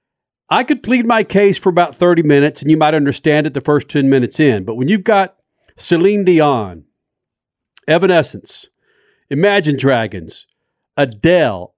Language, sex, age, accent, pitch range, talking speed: English, male, 50-69, American, 140-185 Hz, 150 wpm